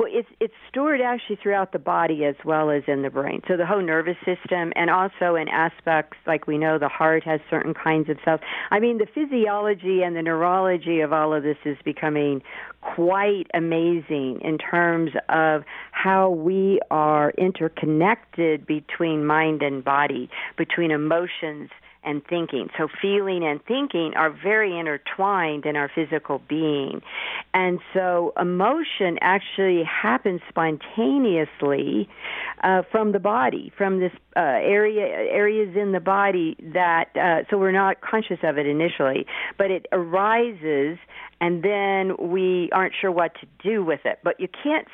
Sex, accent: female, American